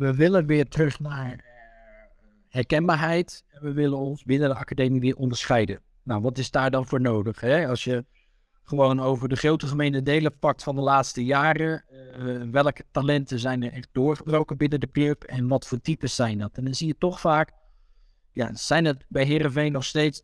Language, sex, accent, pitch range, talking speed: English, male, Dutch, 125-150 Hz, 190 wpm